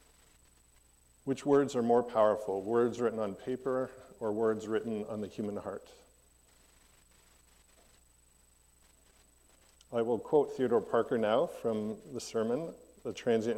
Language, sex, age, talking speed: English, male, 50-69, 120 wpm